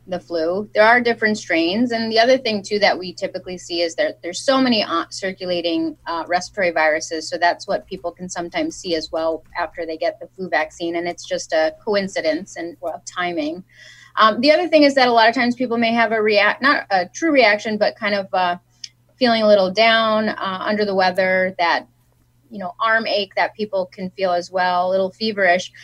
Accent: American